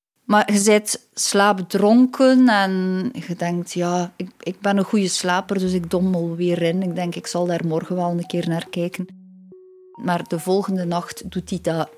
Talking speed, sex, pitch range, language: 185 wpm, female, 175-235 Hz, Dutch